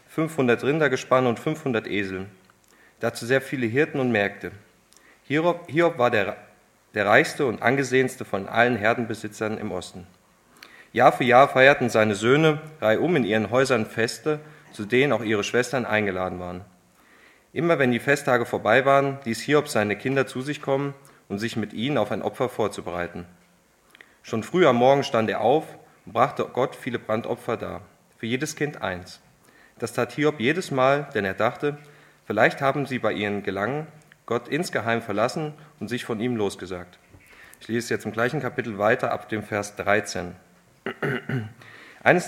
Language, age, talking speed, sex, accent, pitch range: German, 30-49, 165 wpm, male, German, 105-140 Hz